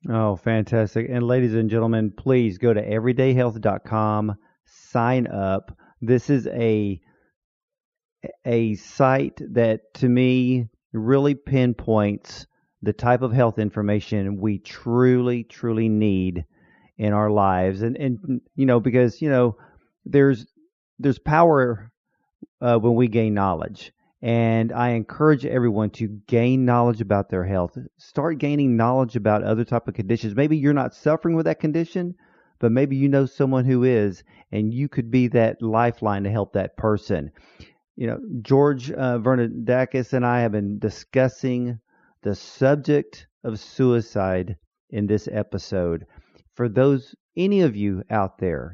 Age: 40-59